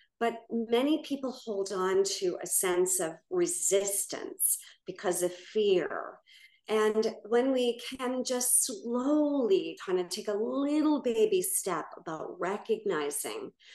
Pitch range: 180-300 Hz